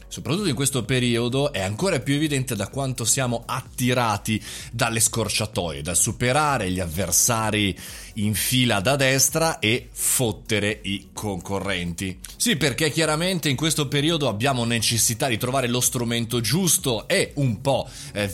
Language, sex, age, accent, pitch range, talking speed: Italian, male, 30-49, native, 110-155 Hz, 140 wpm